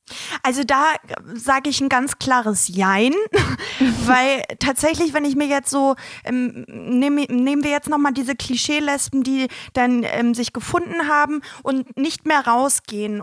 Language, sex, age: German, female, 20-39